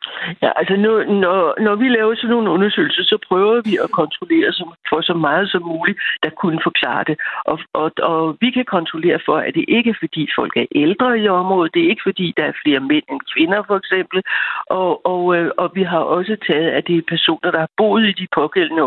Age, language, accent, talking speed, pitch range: 60-79, Danish, native, 215 wpm, 165-230 Hz